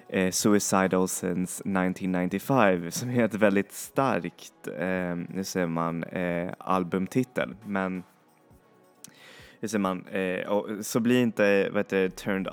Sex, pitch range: male, 90-105 Hz